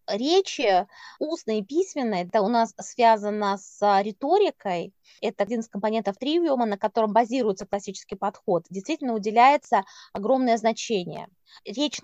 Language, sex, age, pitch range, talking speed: Russian, female, 20-39, 205-255 Hz, 125 wpm